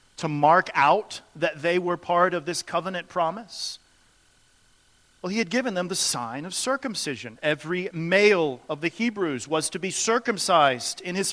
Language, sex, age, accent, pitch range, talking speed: English, male, 40-59, American, 175-240 Hz, 165 wpm